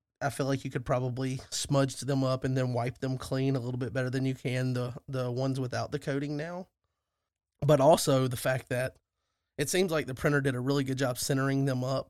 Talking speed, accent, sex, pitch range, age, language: 230 wpm, American, male, 125-140 Hz, 30-49, English